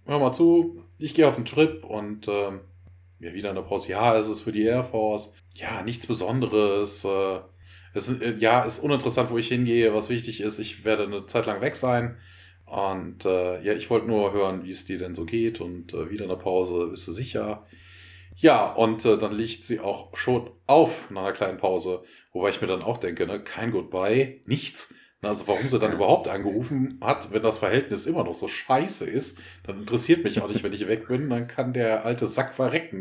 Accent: German